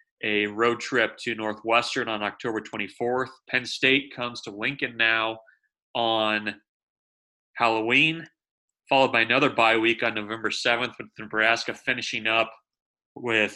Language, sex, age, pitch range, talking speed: English, male, 30-49, 105-120 Hz, 130 wpm